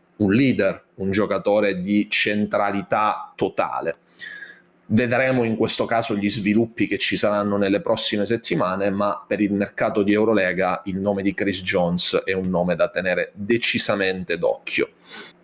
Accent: native